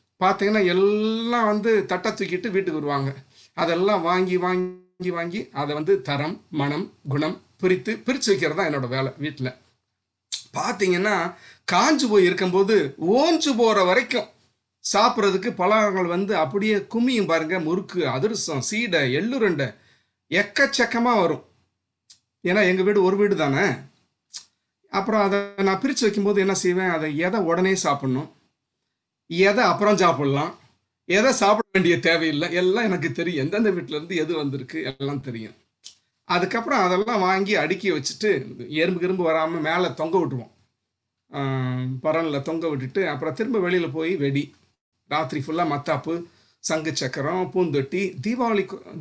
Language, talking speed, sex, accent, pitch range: Tamil, 120 wpm, male, native, 150-205 Hz